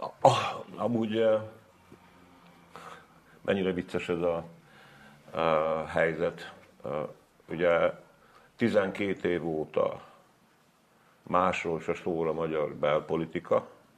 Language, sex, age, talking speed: Hungarian, male, 50-69, 70 wpm